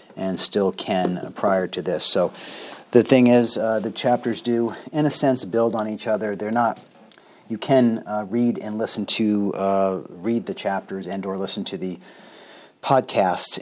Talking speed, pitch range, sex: 170 wpm, 95-110 Hz, male